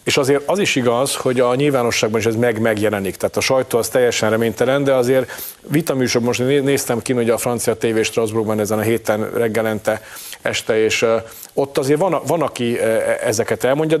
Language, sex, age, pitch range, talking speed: Hungarian, male, 40-59, 110-120 Hz, 190 wpm